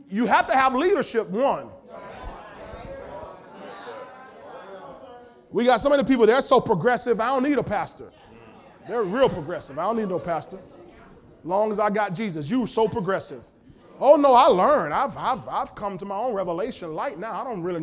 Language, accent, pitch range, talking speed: English, American, 215-295 Hz, 175 wpm